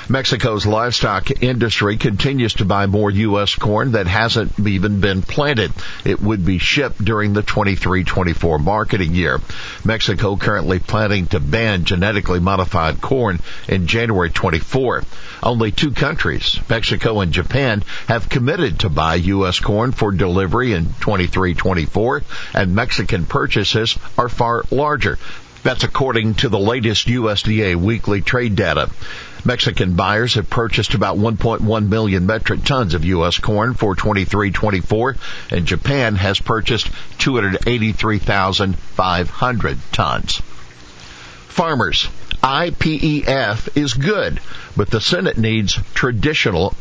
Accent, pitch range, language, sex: American, 95-120 Hz, English, male